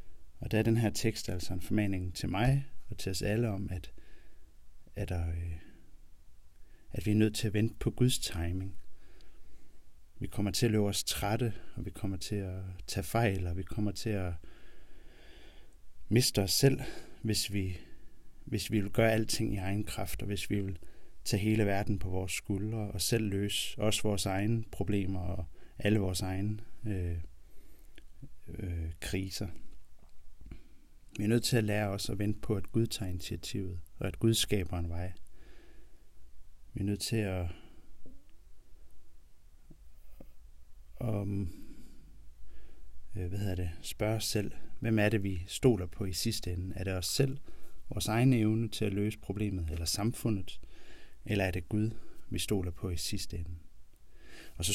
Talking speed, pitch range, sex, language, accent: 160 wpm, 85-105 Hz, male, Danish, native